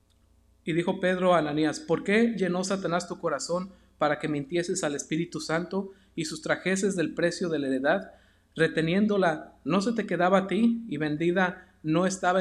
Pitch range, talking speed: 140-185 Hz, 170 wpm